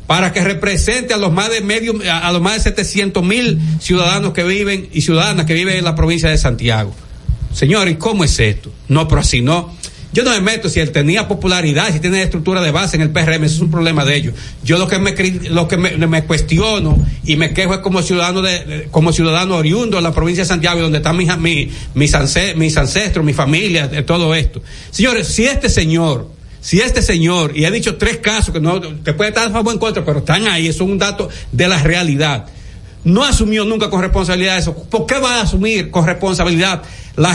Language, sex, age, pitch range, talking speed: Spanish, male, 60-79, 155-195 Hz, 225 wpm